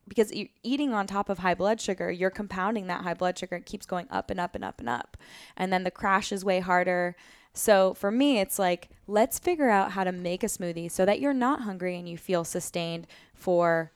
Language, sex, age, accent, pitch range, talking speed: English, female, 10-29, American, 180-220 Hz, 230 wpm